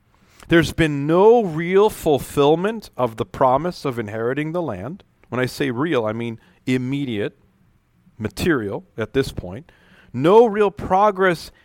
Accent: American